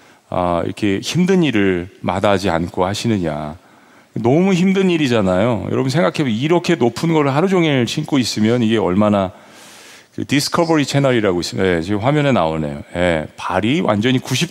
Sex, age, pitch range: male, 40-59, 105-145 Hz